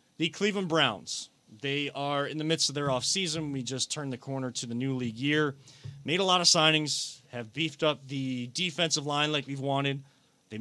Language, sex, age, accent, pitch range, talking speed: English, male, 30-49, American, 130-165 Hz, 205 wpm